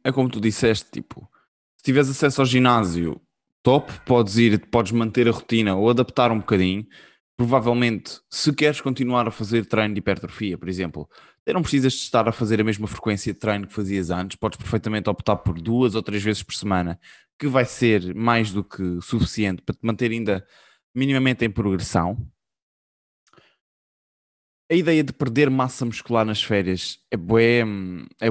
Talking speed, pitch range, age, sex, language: 165 wpm, 95-120 Hz, 20-39, male, Portuguese